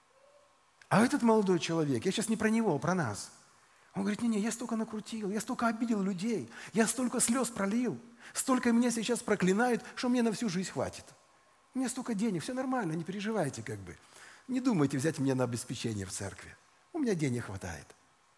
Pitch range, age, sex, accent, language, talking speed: 140-215 Hz, 40-59, male, native, Russian, 190 wpm